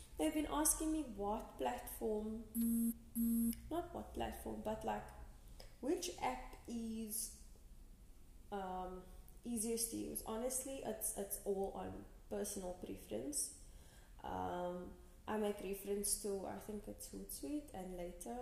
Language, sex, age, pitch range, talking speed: English, female, 10-29, 190-235 Hz, 115 wpm